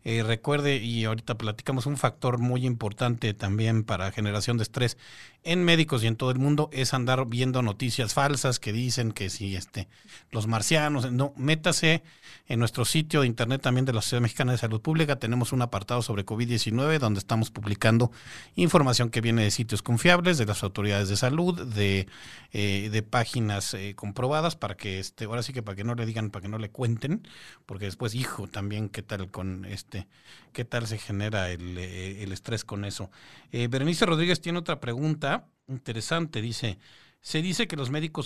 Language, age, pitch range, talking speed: Spanish, 40-59, 110-140 Hz, 185 wpm